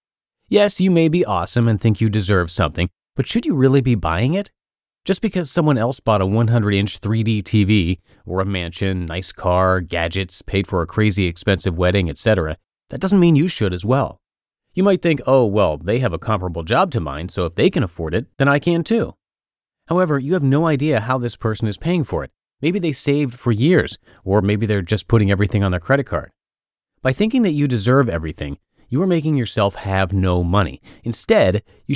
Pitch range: 95-140 Hz